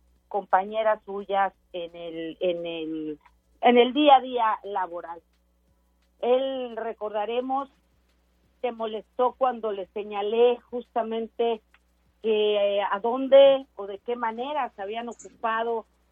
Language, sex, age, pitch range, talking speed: Spanish, female, 40-59, 205-255 Hz, 115 wpm